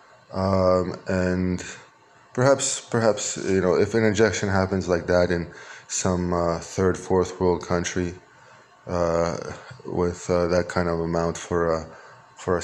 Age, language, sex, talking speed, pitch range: 20-39, Hebrew, male, 140 wpm, 85-95 Hz